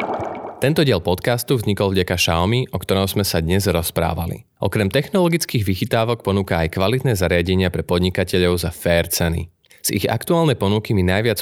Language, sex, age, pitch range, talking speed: Slovak, male, 20-39, 85-110 Hz, 160 wpm